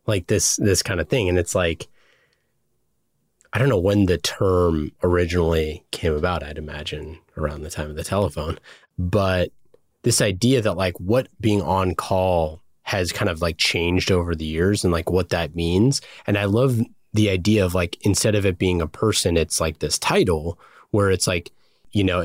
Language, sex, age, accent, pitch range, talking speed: English, male, 30-49, American, 85-110 Hz, 190 wpm